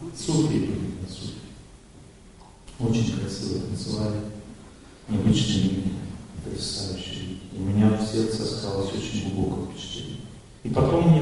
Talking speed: 120 wpm